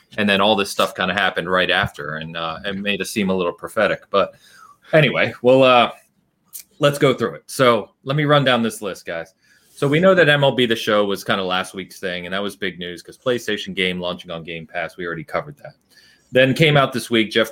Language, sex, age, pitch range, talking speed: English, male, 30-49, 90-115 Hz, 240 wpm